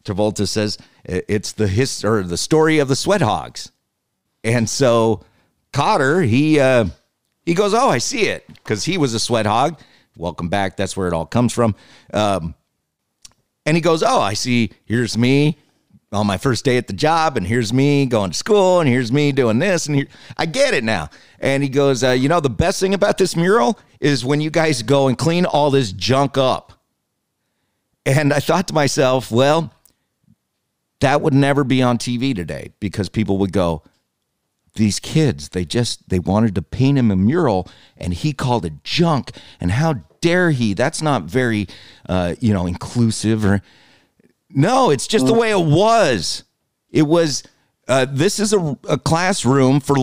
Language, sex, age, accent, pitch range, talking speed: English, male, 50-69, American, 105-150 Hz, 185 wpm